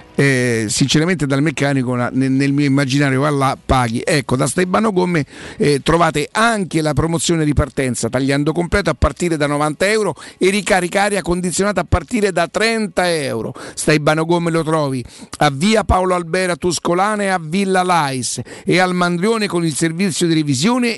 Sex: male